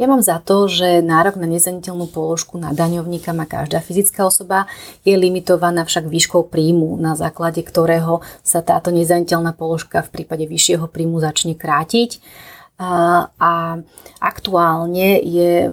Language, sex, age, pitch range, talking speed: Slovak, female, 30-49, 170-185 Hz, 135 wpm